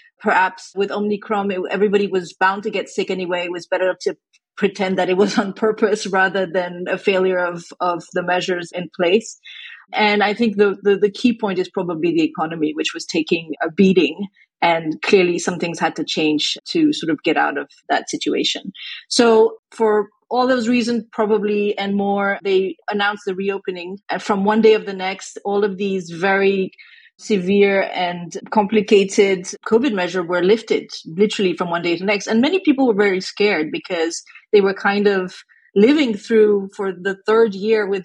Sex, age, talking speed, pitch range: female, 30-49, 185 wpm, 185-220 Hz